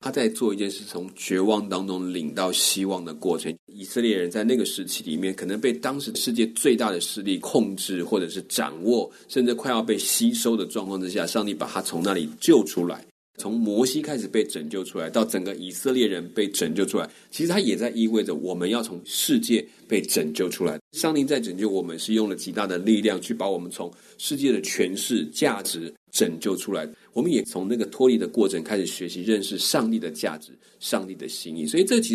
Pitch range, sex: 95-125 Hz, male